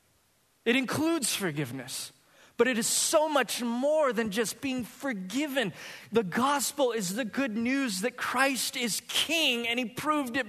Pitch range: 225-275 Hz